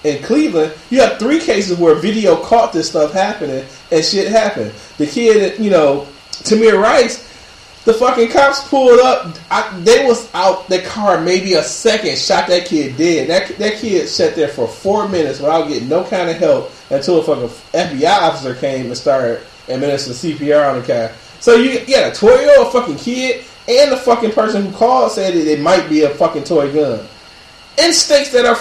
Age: 30-49